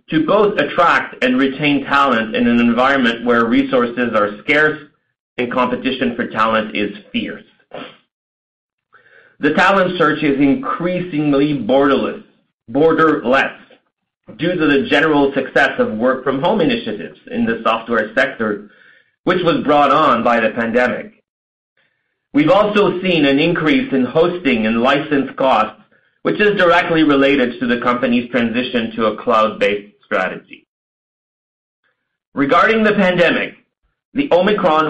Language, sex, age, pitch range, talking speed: English, male, 40-59, 125-180 Hz, 125 wpm